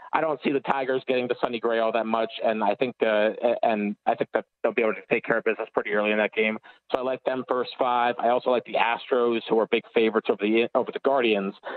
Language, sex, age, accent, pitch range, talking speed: English, male, 30-49, American, 115-140 Hz, 270 wpm